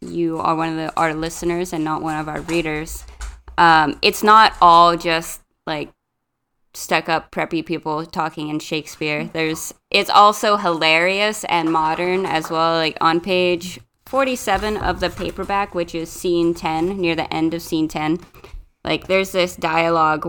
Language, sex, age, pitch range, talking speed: English, female, 20-39, 155-180 Hz, 160 wpm